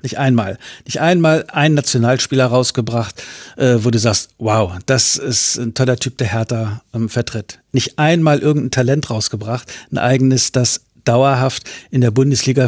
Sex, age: male, 60-79